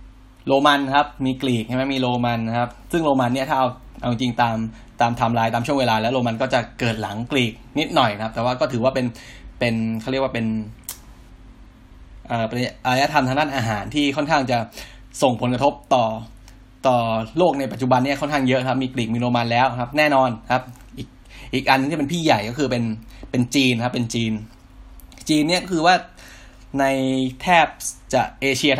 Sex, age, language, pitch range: male, 10-29, Thai, 115-135 Hz